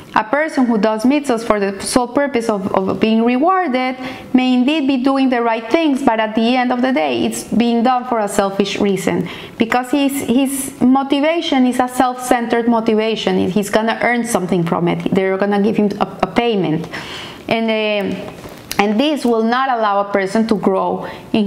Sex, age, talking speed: female, 30-49, 190 wpm